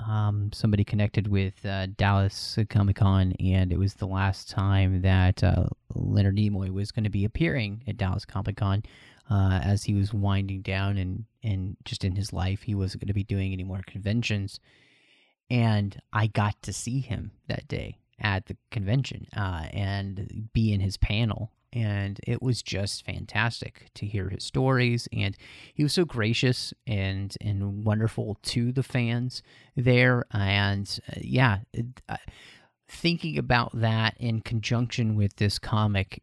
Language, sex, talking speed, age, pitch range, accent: English, male, 165 wpm, 30-49, 100-120 Hz, American